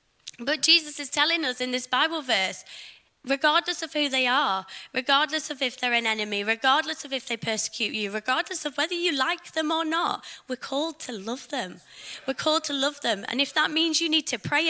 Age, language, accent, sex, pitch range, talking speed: 20-39, English, British, female, 235-290 Hz, 210 wpm